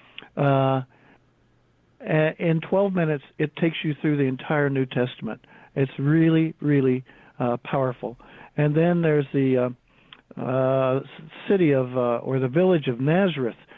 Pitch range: 130-150 Hz